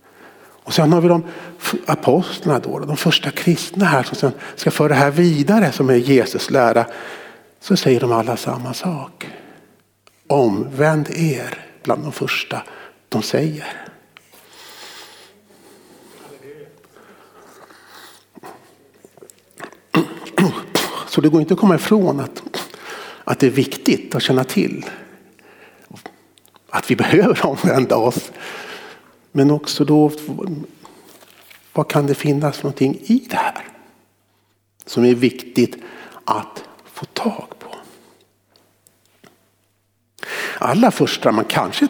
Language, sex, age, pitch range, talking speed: Swedish, male, 60-79, 110-170 Hz, 110 wpm